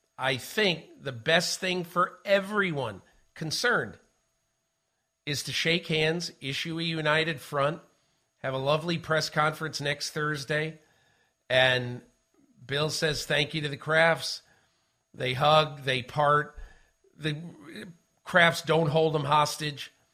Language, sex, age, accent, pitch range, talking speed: English, male, 50-69, American, 140-165 Hz, 120 wpm